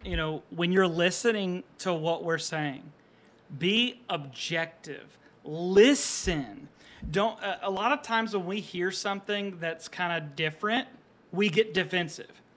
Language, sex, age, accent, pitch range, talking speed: English, male, 30-49, American, 165-215 Hz, 135 wpm